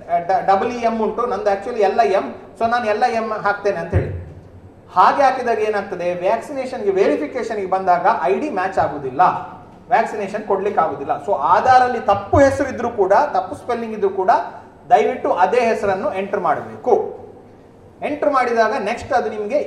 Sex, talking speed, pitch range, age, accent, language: male, 155 wpm, 205-255 Hz, 30-49, native, Kannada